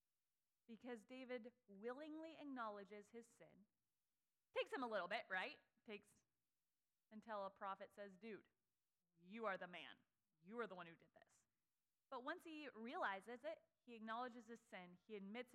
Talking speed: 155 wpm